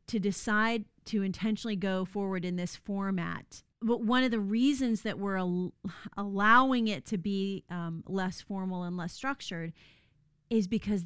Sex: female